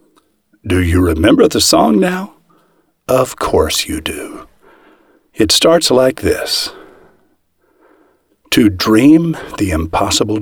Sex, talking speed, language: male, 105 wpm, English